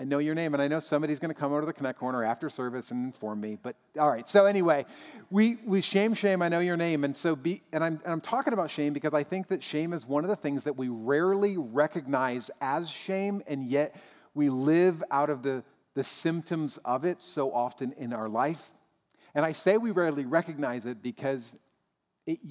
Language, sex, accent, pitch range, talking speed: English, male, American, 120-165 Hz, 225 wpm